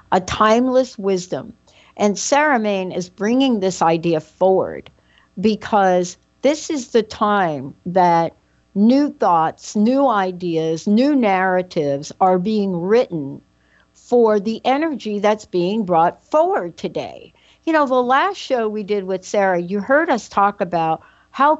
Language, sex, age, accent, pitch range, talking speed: English, female, 60-79, American, 180-245 Hz, 135 wpm